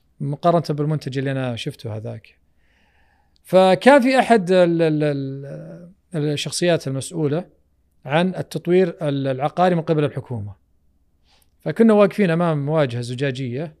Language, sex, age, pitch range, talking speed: Arabic, male, 40-59, 120-180 Hz, 95 wpm